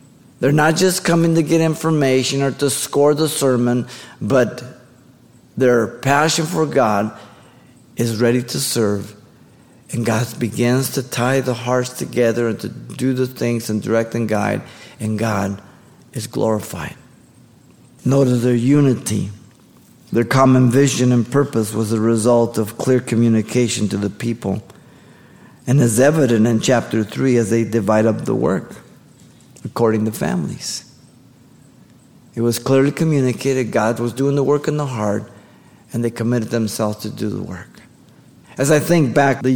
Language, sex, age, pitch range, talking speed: English, male, 50-69, 110-135 Hz, 150 wpm